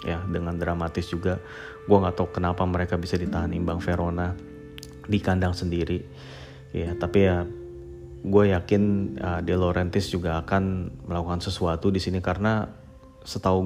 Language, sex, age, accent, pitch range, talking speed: Indonesian, male, 30-49, native, 85-95 Hz, 140 wpm